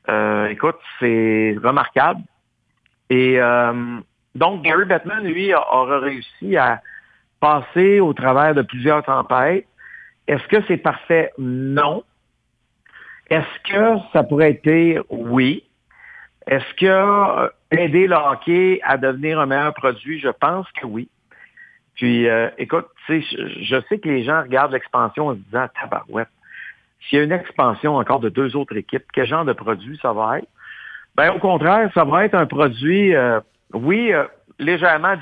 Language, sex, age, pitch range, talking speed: French, male, 60-79, 120-155 Hz, 155 wpm